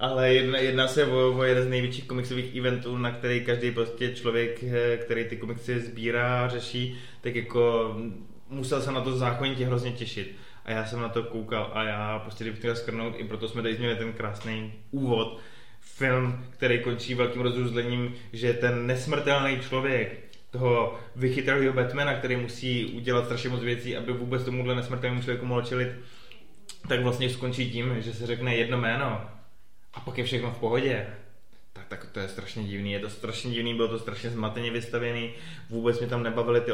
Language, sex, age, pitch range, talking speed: Czech, male, 20-39, 115-125 Hz, 175 wpm